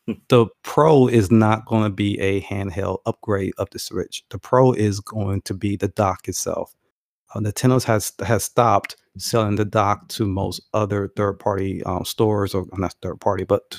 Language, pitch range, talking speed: English, 100-120 Hz, 175 wpm